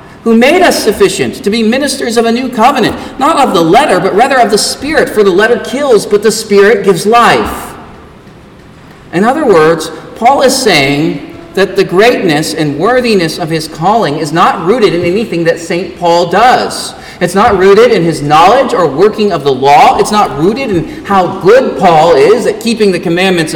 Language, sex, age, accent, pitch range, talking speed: English, male, 40-59, American, 185-245 Hz, 190 wpm